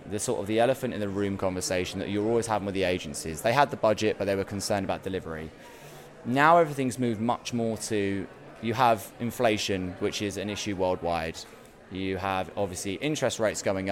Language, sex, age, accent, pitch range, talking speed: English, male, 20-39, British, 95-120 Hz, 200 wpm